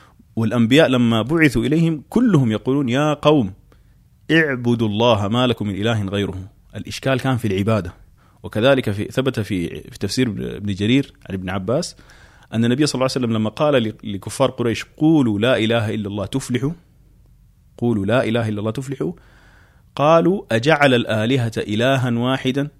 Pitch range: 105-140 Hz